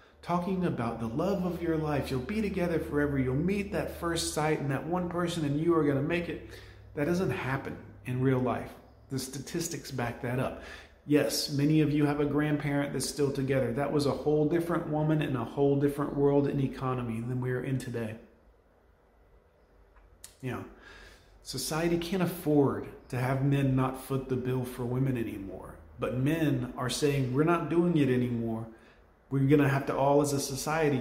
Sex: male